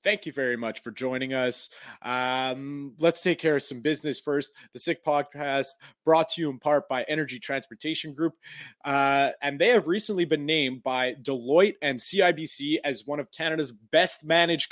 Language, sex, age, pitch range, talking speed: English, male, 20-39, 135-175 Hz, 180 wpm